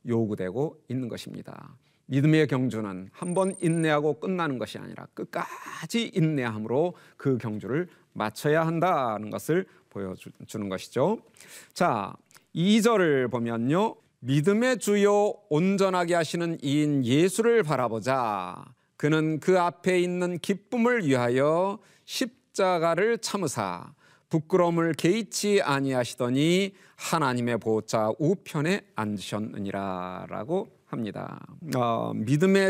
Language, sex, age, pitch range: Korean, male, 40-59, 120-185 Hz